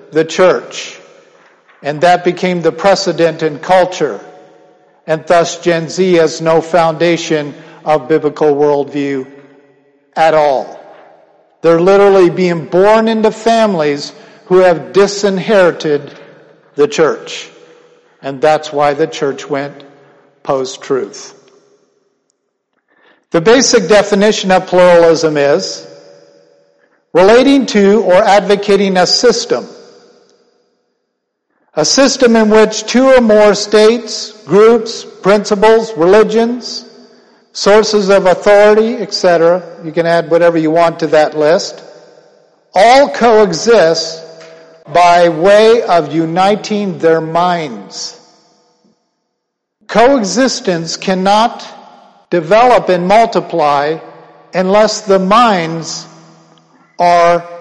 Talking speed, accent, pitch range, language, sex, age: 95 wpm, American, 160-215 Hz, English, male, 50-69